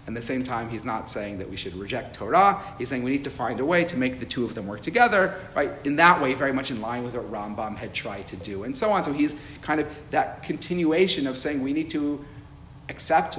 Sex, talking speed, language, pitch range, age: male, 265 wpm, English, 105-140 Hz, 40-59